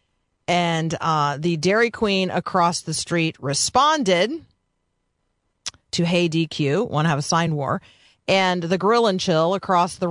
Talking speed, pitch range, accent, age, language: 150 wpm, 170-225 Hz, American, 40-59, English